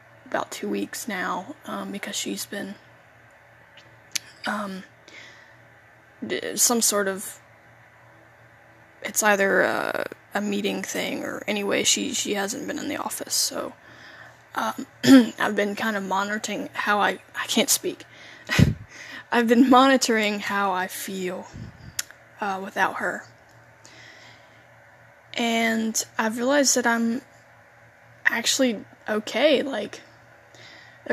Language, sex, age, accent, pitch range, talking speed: English, female, 10-29, American, 195-235 Hz, 110 wpm